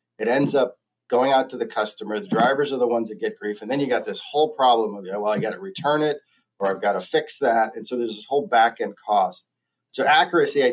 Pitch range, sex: 110-130 Hz, male